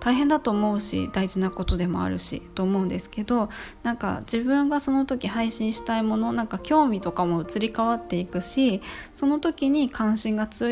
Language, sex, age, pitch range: Japanese, female, 20-39, 180-245 Hz